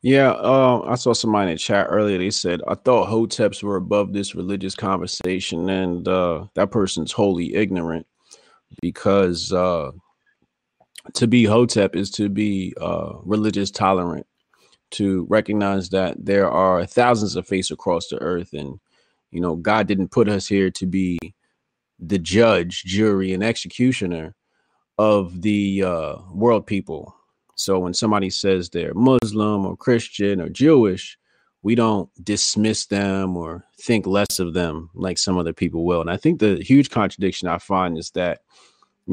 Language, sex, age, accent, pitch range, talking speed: English, male, 30-49, American, 90-105 Hz, 155 wpm